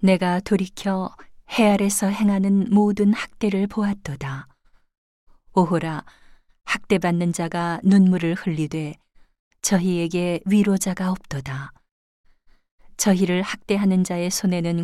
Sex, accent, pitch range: female, native, 165-195 Hz